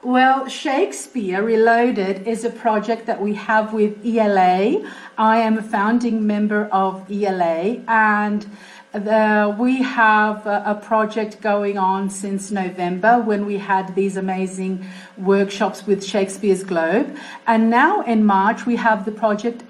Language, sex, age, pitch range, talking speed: English, female, 50-69, 215-275 Hz, 135 wpm